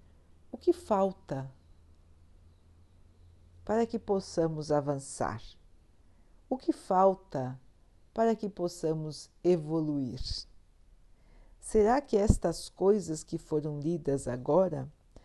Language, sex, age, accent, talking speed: Portuguese, female, 60-79, Brazilian, 85 wpm